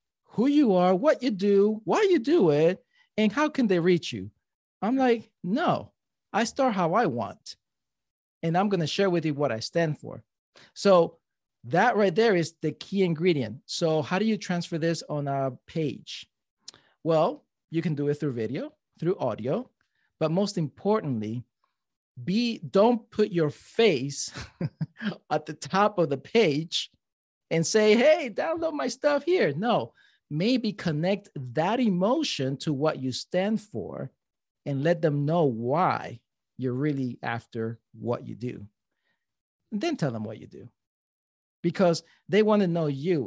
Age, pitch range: 40-59, 145-200 Hz